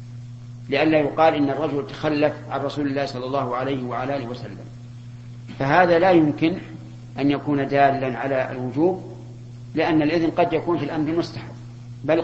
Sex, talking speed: male, 145 wpm